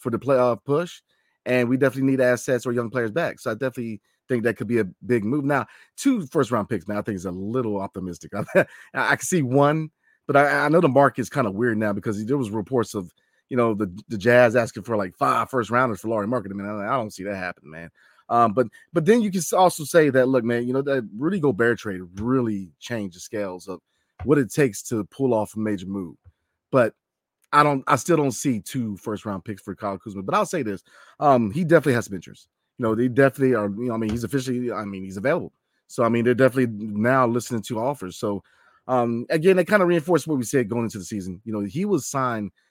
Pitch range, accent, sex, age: 105-135 Hz, American, male, 30-49